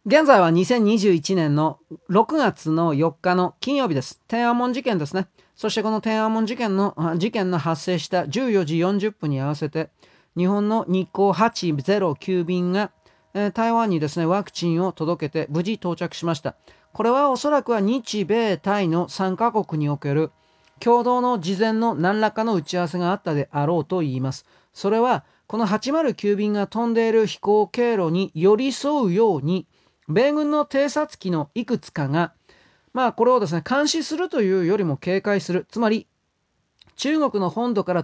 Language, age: Japanese, 40-59